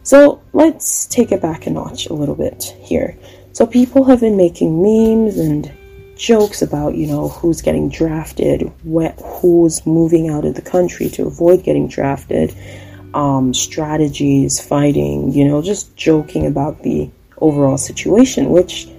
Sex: female